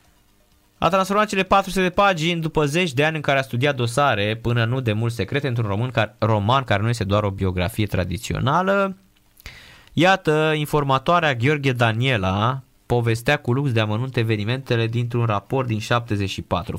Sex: male